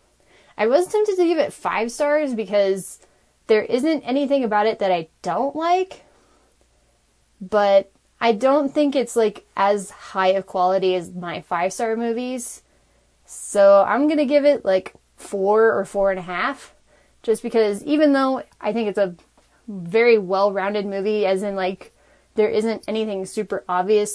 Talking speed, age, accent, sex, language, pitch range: 160 wpm, 20-39, American, female, English, 190-230 Hz